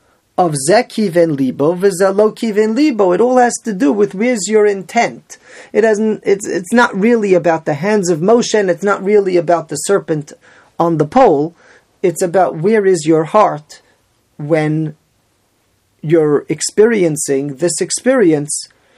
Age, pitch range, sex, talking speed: 30-49, 155-205 Hz, male, 150 wpm